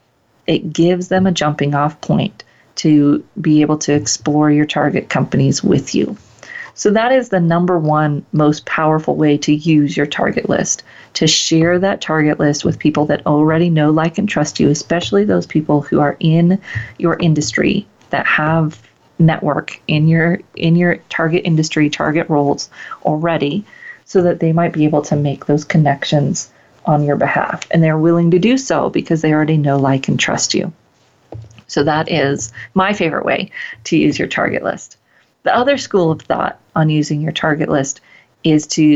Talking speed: 175 wpm